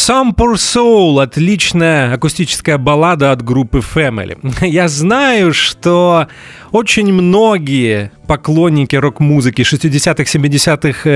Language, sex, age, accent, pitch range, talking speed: Russian, male, 30-49, native, 125-170 Hz, 95 wpm